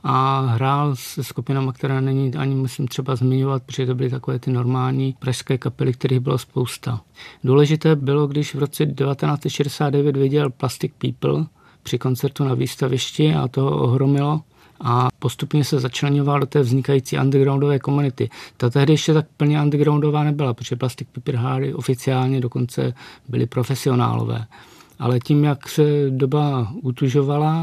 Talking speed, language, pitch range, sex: 145 wpm, Czech, 125-145 Hz, male